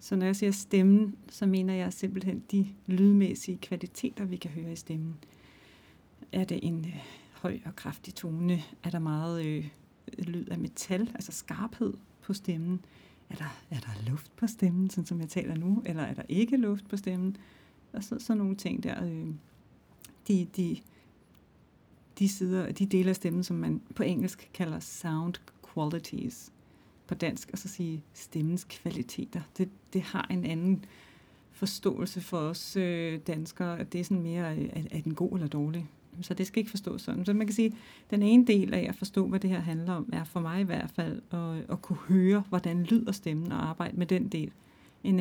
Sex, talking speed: female, 185 wpm